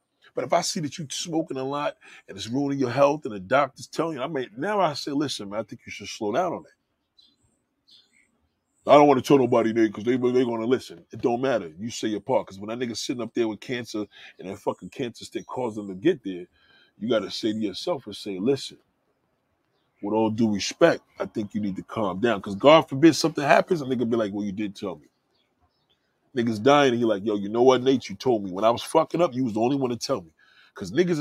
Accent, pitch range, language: American, 115-175 Hz, English